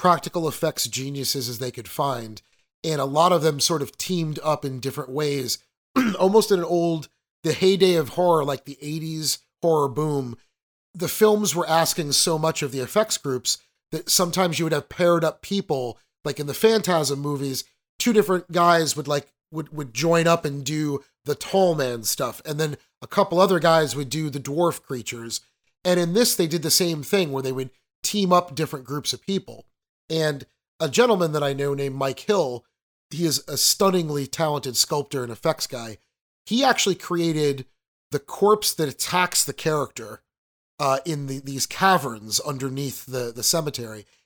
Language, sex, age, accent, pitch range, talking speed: English, male, 30-49, American, 135-180 Hz, 180 wpm